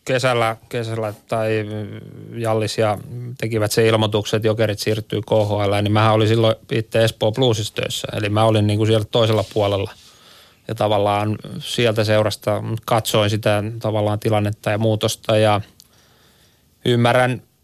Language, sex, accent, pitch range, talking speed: Finnish, male, native, 110-120 Hz, 125 wpm